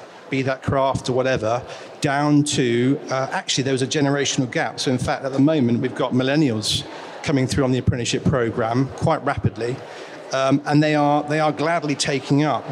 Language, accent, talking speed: English, British, 190 wpm